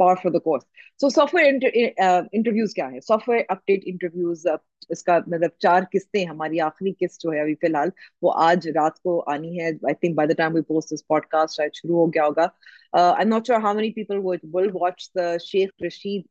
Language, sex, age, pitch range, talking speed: Urdu, female, 30-49, 160-190 Hz, 140 wpm